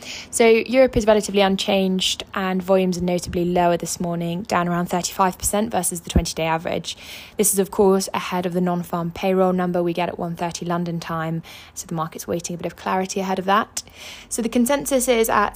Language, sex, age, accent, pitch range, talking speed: English, female, 20-39, British, 175-195 Hz, 195 wpm